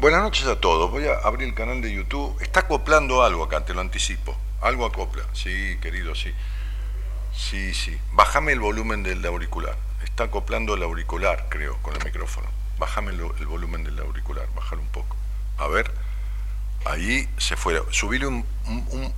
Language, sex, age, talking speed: Spanish, male, 50-69, 175 wpm